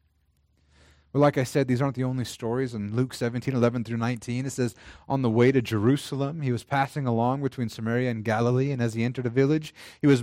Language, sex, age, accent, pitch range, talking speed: English, male, 30-49, American, 110-140 Hz, 215 wpm